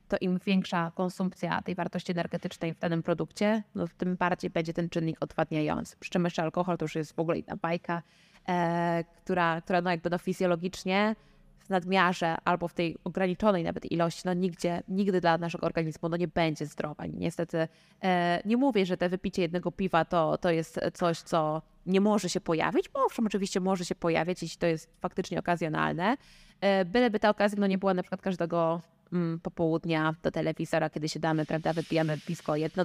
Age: 20-39